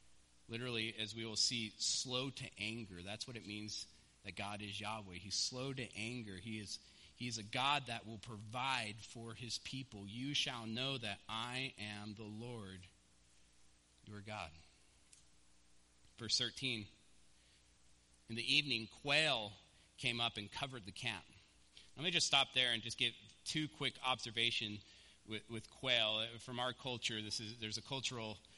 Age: 30-49